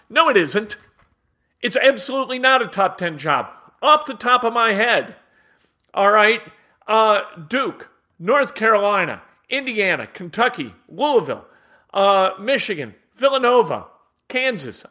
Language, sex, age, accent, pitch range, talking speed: English, male, 50-69, American, 170-245 Hz, 115 wpm